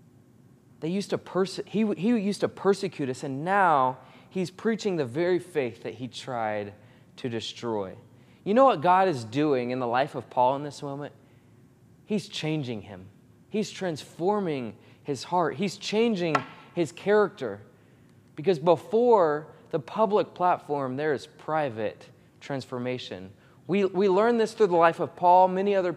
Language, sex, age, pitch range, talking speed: English, male, 20-39, 135-195 Hz, 155 wpm